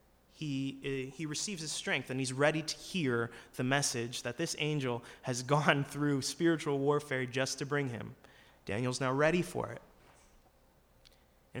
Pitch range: 125-160 Hz